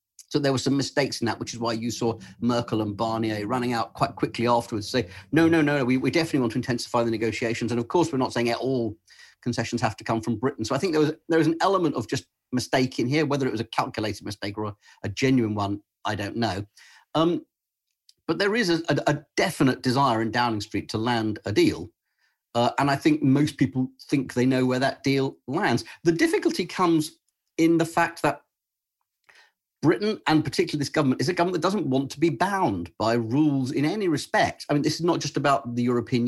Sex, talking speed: male, 225 wpm